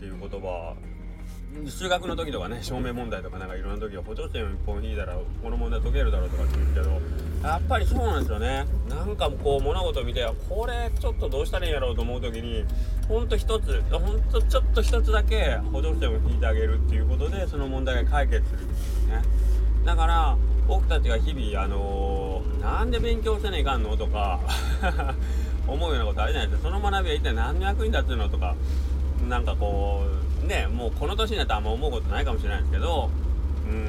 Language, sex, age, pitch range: Japanese, male, 20-39, 70-85 Hz